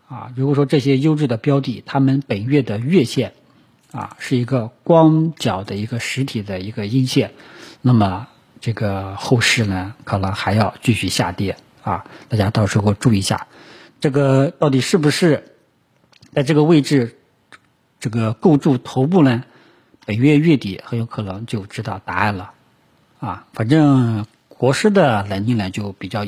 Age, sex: 50-69, male